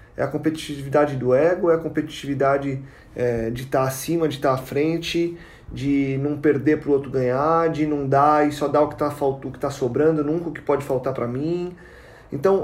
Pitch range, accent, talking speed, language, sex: 145-175 Hz, Brazilian, 215 wpm, Portuguese, male